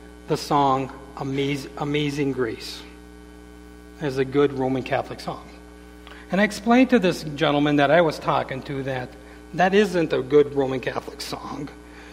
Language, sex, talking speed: English, male, 145 wpm